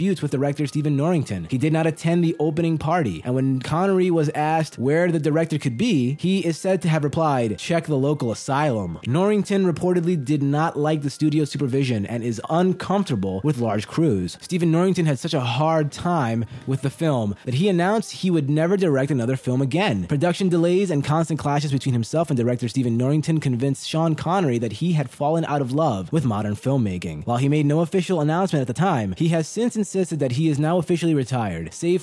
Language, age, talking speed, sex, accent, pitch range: English, 20-39, 200 wpm, male, American, 130-170 Hz